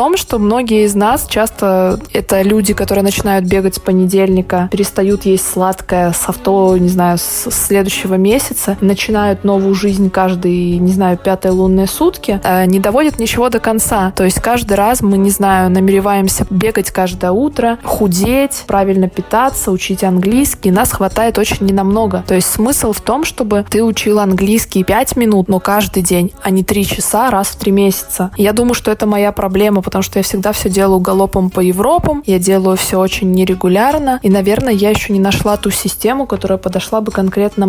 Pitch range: 190-210 Hz